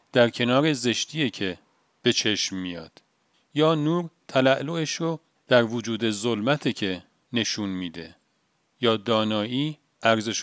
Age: 40-59